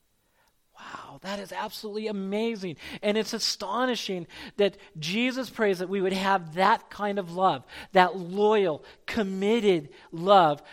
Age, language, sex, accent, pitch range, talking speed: 40-59, English, male, American, 155-225 Hz, 130 wpm